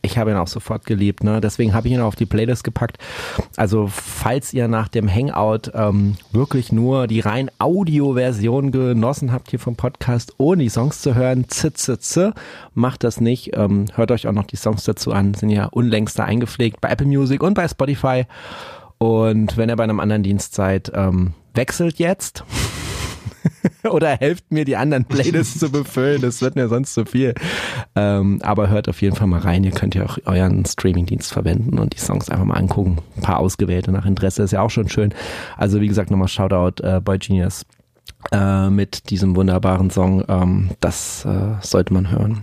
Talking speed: 195 wpm